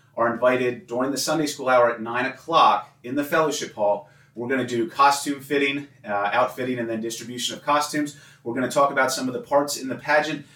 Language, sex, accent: English, male, American